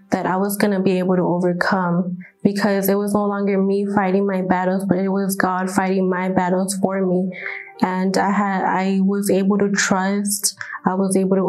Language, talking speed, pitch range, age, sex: English, 200 wpm, 185-205 Hz, 20-39, female